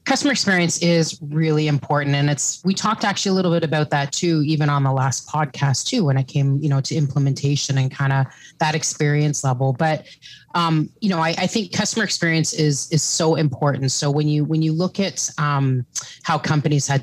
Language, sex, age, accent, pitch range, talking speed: English, female, 30-49, American, 135-160 Hz, 210 wpm